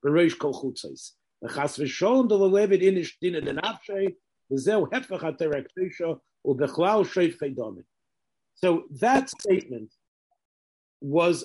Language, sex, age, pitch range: English, male, 50-69, 145-205 Hz